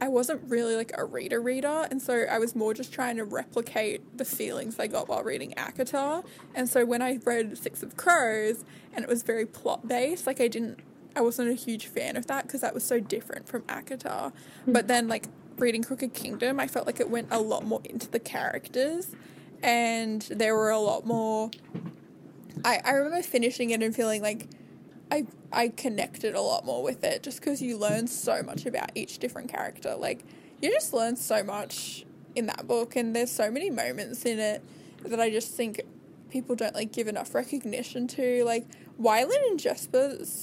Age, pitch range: 10-29, 225-260 Hz